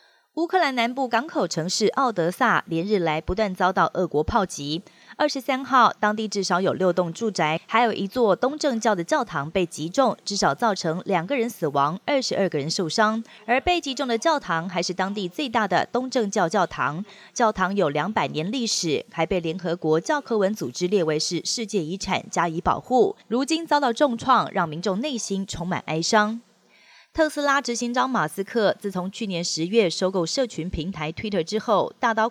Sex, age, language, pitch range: female, 20-39, Chinese, 175-240 Hz